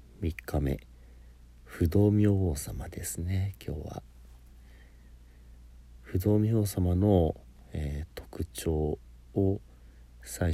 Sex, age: male, 50-69